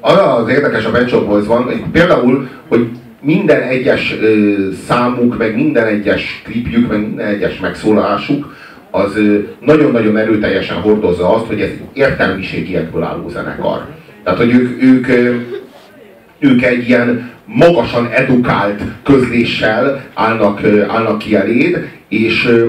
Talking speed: 120 wpm